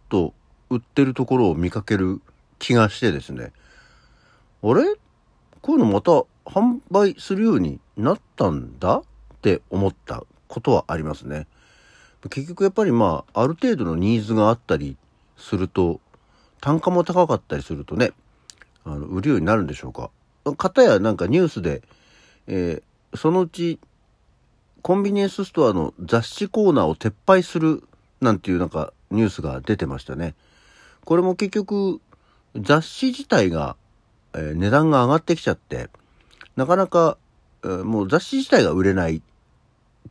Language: Japanese